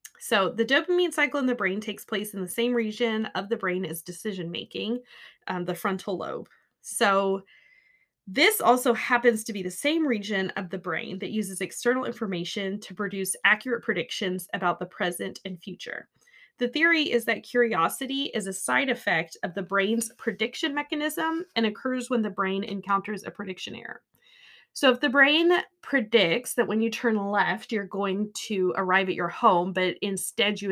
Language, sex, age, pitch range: English, female, 20-39, 190-250 Hz